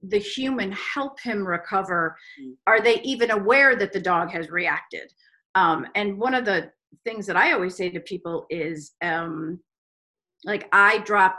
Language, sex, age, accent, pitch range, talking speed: English, female, 40-59, American, 180-255 Hz, 165 wpm